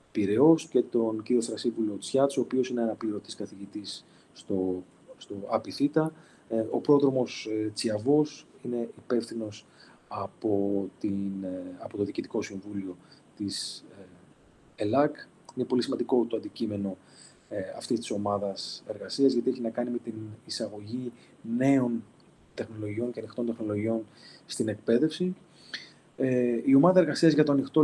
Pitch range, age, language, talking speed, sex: 110-135 Hz, 30-49, Greek, 120 wpm, male